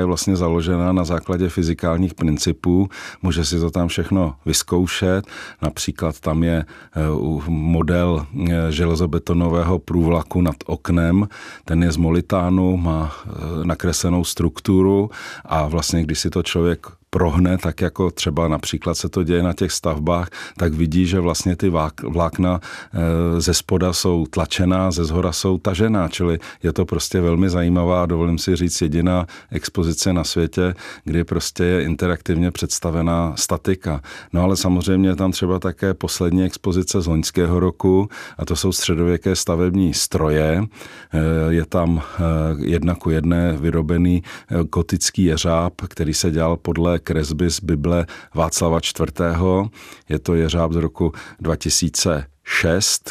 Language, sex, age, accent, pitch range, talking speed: Czech, male, 40-59, native, 80-90 Hz, 135 wpm